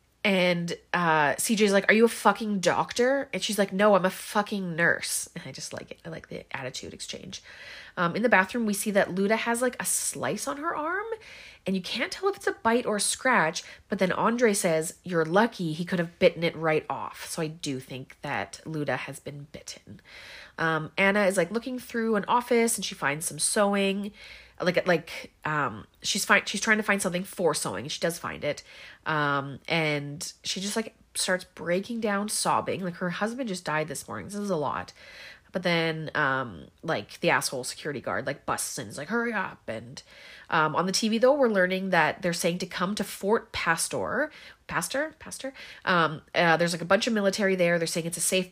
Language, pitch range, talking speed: English, 160-215 Hz, 210 wpm